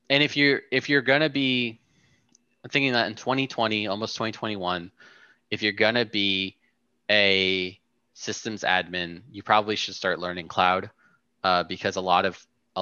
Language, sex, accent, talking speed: English, male, American, 155 wpm